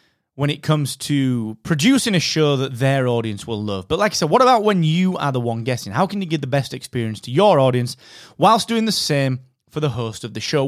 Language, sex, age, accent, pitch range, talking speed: English, male, 30-49, British, 125-185 Hz, 245 wpm